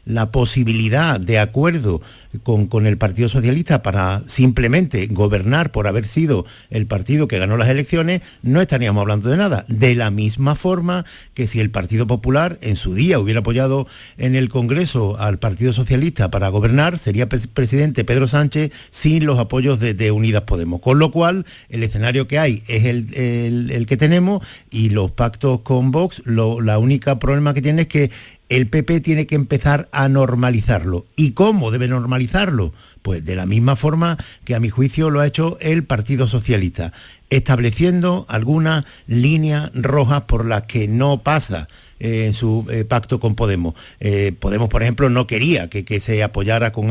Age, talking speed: 50-69, 175 wpm